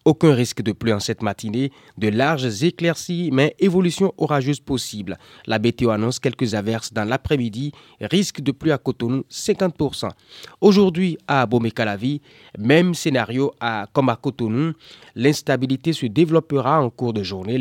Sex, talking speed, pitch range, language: male, 145 wpm, 120-155 Hz, French